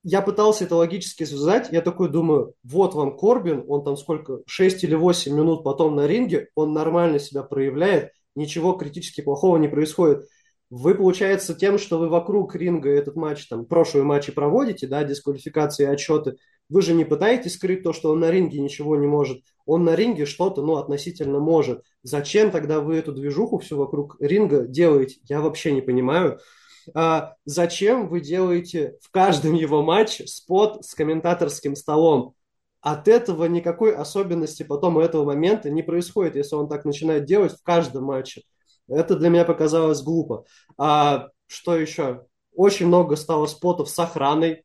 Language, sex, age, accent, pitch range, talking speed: Russian, male, 20-39, native, 150-180 Hz, 160 wpm